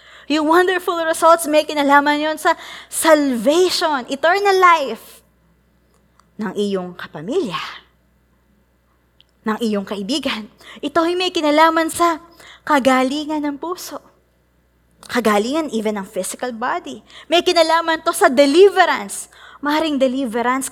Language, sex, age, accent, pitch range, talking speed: Filipino, female, 20-39, native, 180-295 Hz, 105 wpm